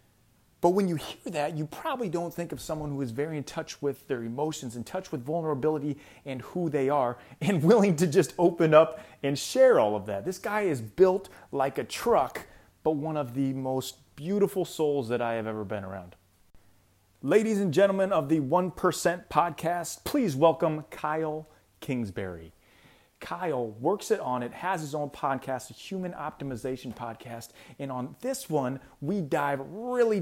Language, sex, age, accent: English, male, 30-49, American